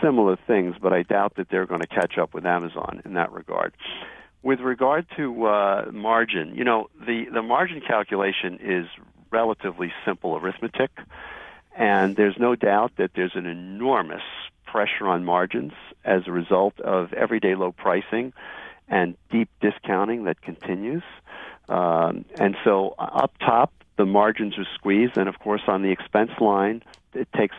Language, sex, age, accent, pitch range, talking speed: English, male, 50-69, American, 95-115 Hz, 155 wpm